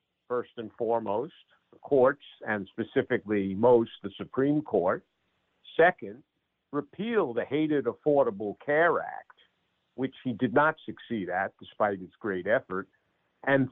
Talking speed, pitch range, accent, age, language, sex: 125 wpm, 115-165 Hz, American, 50-69, English, male